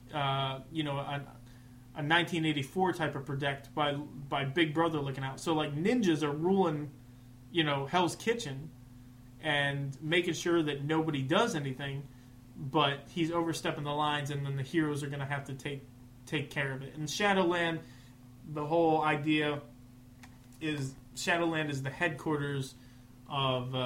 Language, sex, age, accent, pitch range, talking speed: English, male, 20-39, American, 130-170 Hz, 155 wpm